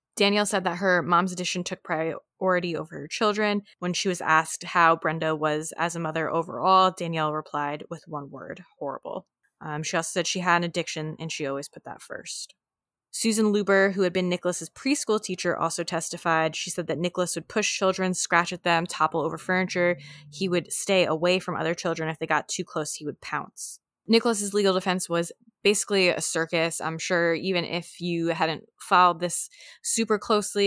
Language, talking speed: English, 190 wpm